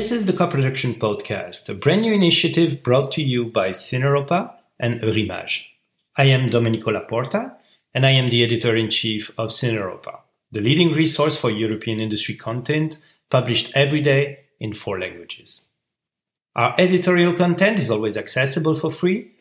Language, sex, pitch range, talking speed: English, male, 115-155 Hz, 160 wpm